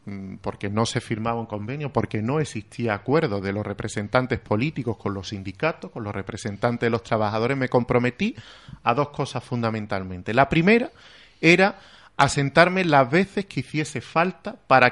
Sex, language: male, Spanish